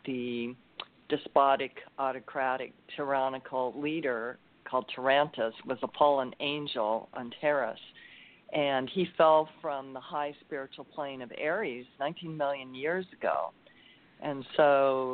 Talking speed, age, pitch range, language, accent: 115 wpm, 50-69, 125-145 Hz, English, American